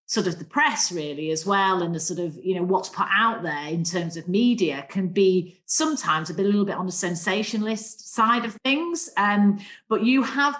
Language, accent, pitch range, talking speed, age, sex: English, British, 170-215 Hz, 215 wpm, 40-59, female